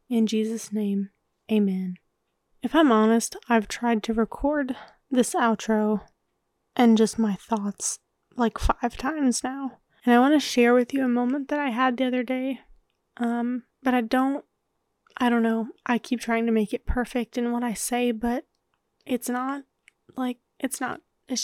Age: 20-39